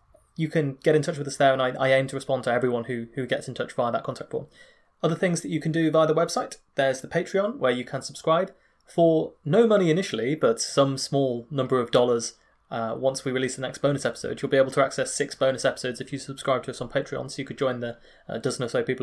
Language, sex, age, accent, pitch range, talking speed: English, male, 20-39, British, 130-160 Hz, 265 wpm